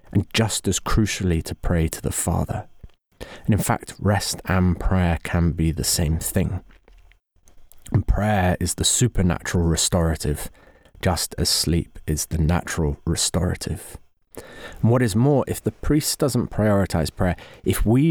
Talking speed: 150 wpm